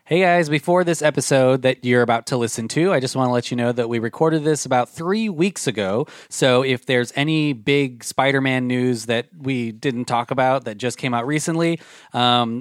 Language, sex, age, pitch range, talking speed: English, male, 20-39, 125-160 Hz, 210 wpm